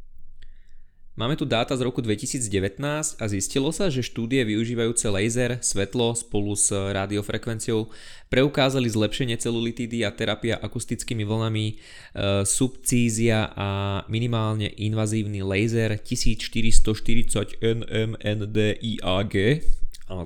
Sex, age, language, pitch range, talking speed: male, 20-39, Slovak, 100-115 Hz, 95 wpm